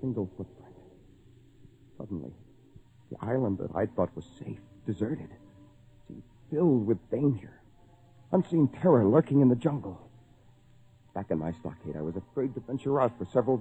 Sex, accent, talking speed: male, American, 140 wpm